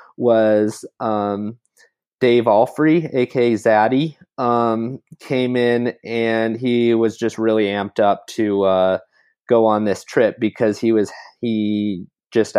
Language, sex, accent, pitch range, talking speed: English, male, American, 95-115 Hz, 130 wpm